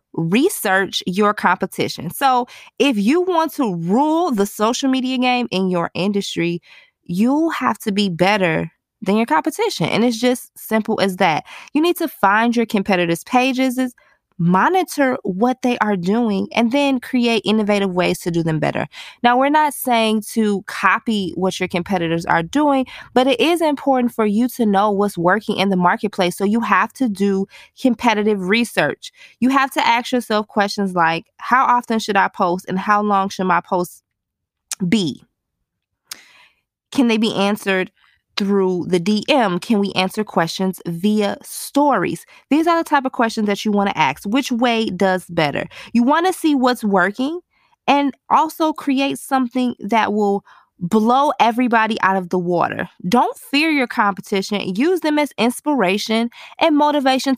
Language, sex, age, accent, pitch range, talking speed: English, female, 20-39, American, 190-260 Hz, 165 wpm